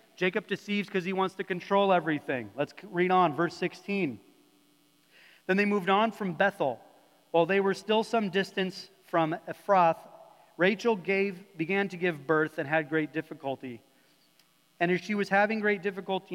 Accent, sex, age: American, male, 30-49